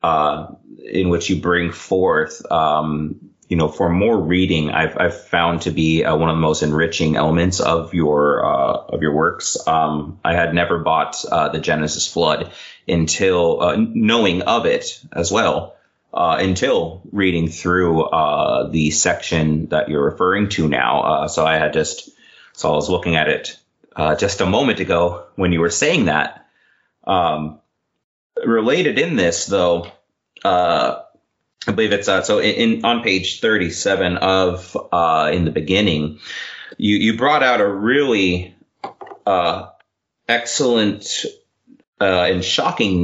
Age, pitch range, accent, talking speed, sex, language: 30-49, 80-105 Hz, American, 155 wpm, male, English